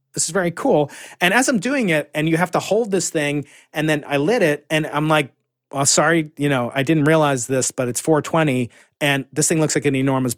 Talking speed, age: 245 wpm, 30-49